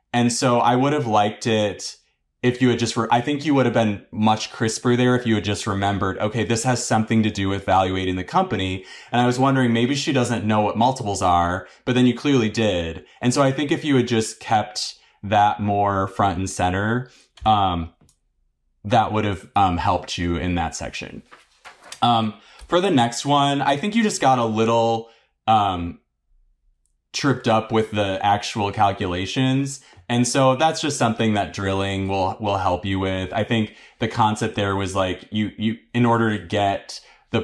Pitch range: 95-115 Hz